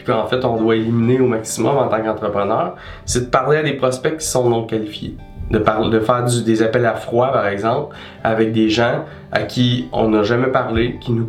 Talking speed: 225 wpm